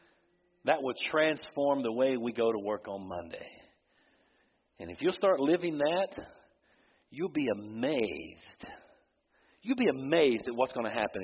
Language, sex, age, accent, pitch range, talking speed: English, male, 50-69, American, 130-195 Hz, 150 wpm